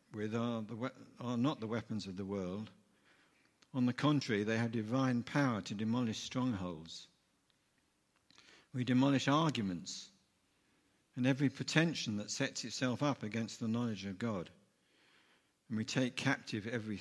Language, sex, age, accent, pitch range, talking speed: English, male, 60-79, British, 100-120 Hz, 140 wpm